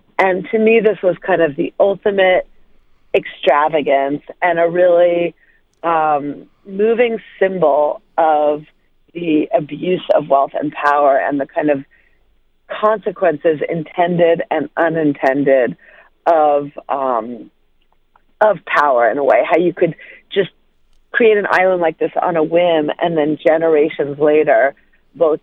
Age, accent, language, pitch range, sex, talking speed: 40-59, American, English, 150-190 Hz, female, 130 wpm